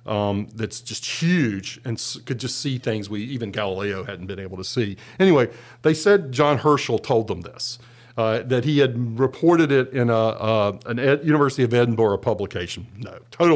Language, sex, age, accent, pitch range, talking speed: English, male, 50-69, American, 115-145 Hz, 170 wpm